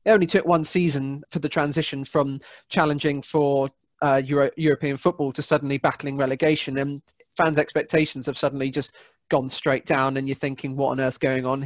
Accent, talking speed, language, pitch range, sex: British, 185 wpm, English, 135-165 Hz, male